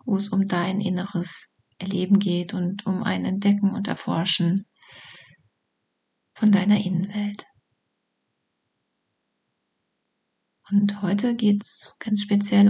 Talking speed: 105 wpm